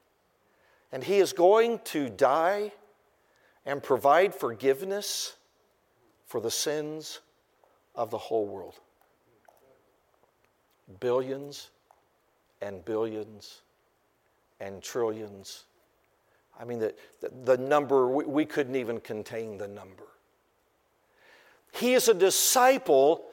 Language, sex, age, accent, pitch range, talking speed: English, male, 60-79, American, 215-330 Hz, 100 wpm